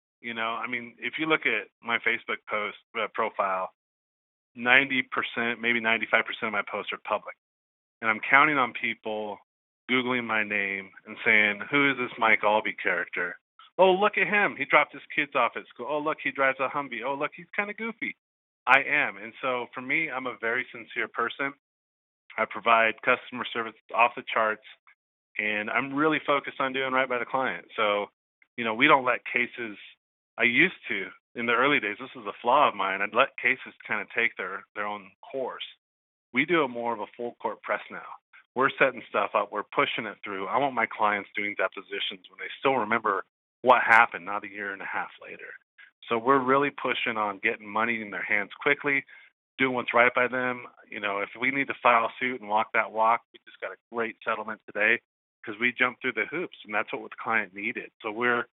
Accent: American